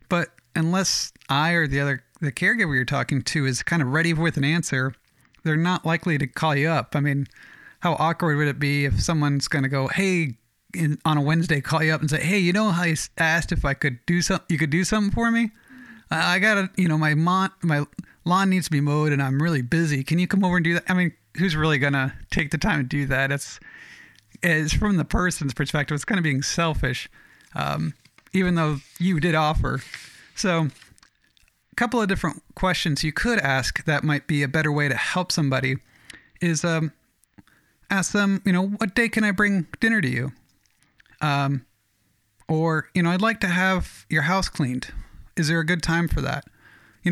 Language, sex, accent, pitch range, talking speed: English, male, American, 140-175 Hz, 215 wpm